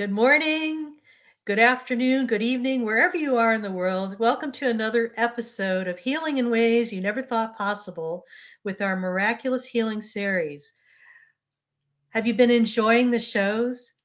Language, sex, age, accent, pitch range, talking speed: English, female, 50-69, American, 190-245 Hz, 150 wpm